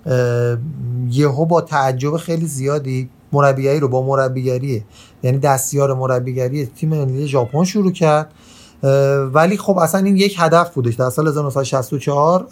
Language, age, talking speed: Persian, 30-49, 125 wpm